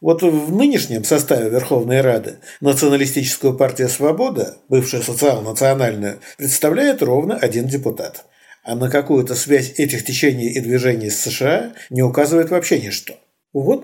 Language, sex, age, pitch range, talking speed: Russian, male, 50-69, 120-155 Hz, 130 wpm